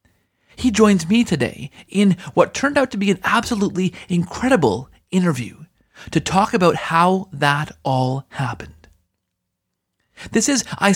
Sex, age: male, 30-49